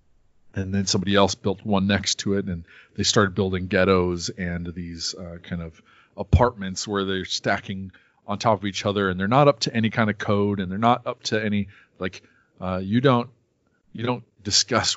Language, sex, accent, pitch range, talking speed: English, male, American, 90-105 Hz, 200 wpm